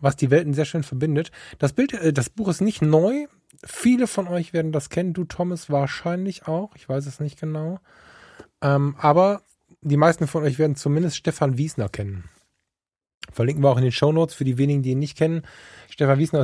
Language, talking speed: German, 205 wpm